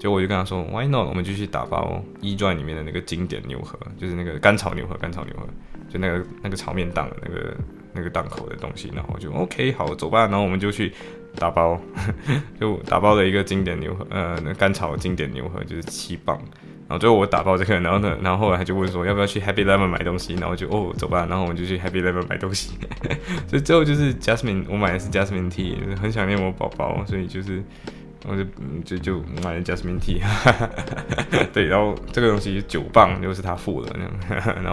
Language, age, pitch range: Chinese, 20-39, 90-105 Hz